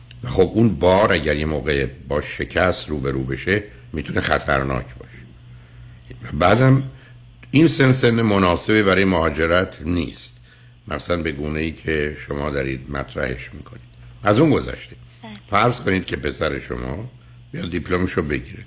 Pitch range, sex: 75-120 Hz, male